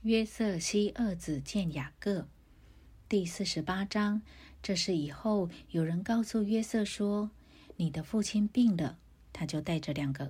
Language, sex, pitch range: Chinese, female, 155-205 Hz